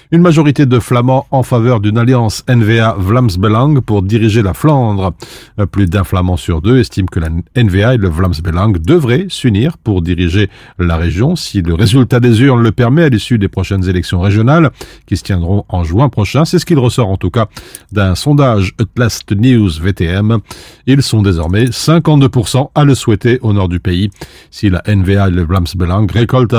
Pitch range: 95-125 Hz